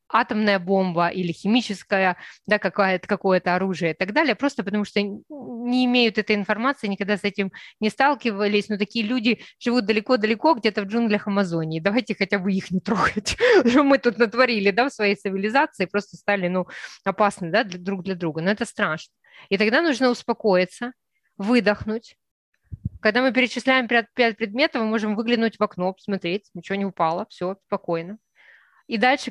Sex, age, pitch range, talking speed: female, 20-39, 195-245 Hz, 155 wpm